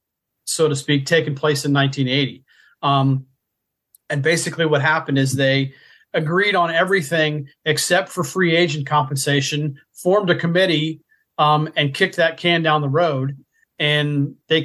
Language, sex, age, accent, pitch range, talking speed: English, male, 40-59, American, 140-165 Hz, 145 wpm